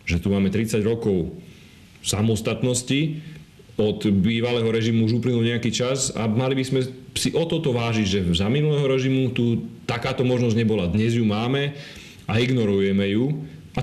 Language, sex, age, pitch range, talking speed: Slovak, male, 40-59, 105-130 Hz, 155 wpm